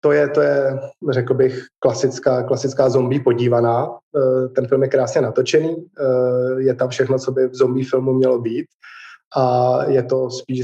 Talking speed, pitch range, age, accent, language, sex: 175 wpm, 130-145 Hz, 20-39, native, Czech, male